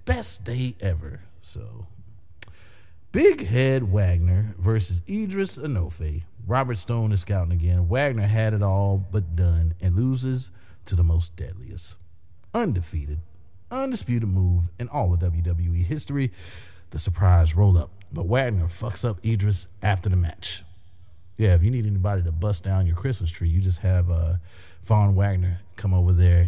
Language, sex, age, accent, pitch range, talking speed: English, male, 30-49, American, 90-120 Hz, 150 wpm